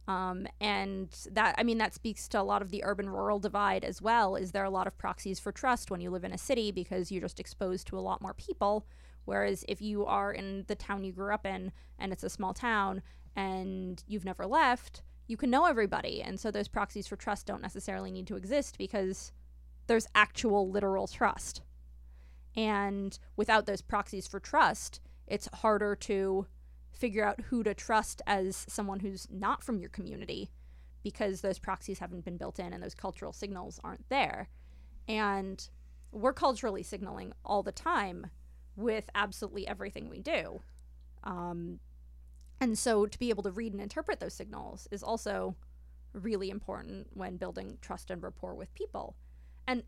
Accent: American